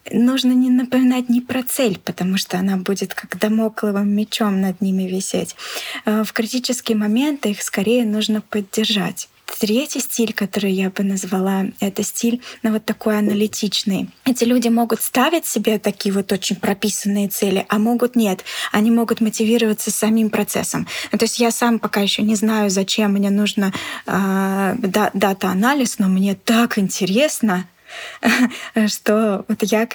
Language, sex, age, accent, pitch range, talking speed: Russian, female, 20-39, native, 205-235 Hz, 150 wpm